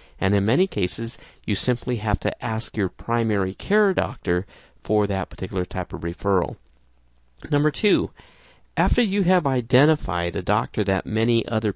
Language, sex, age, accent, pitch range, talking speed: English, male, 50-69, American, 95-135 Hz, 155 wpm